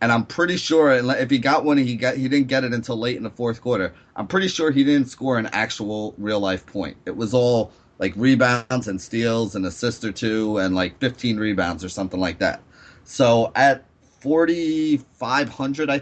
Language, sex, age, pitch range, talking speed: English, male, 30-49, 110-140 Hz, 200 wpm